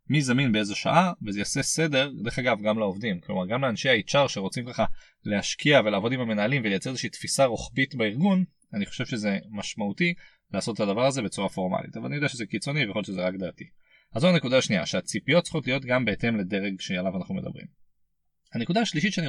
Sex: male